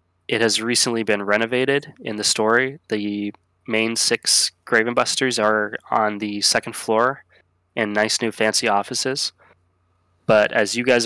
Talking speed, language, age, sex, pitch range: 140 wpm, English, 20-39, male, 95-115 Hz